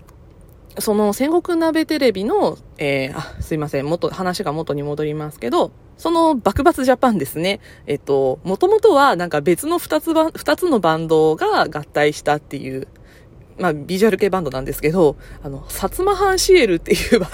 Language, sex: Japanese, female